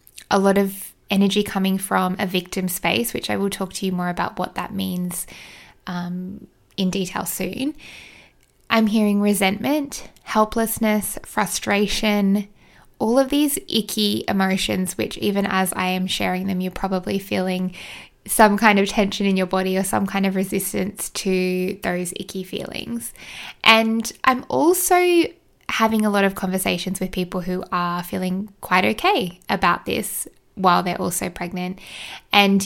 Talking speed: 150 wpm